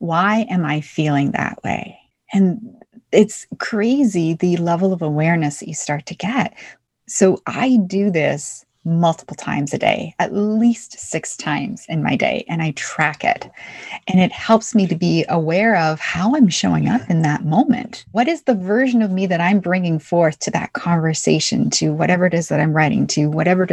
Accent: American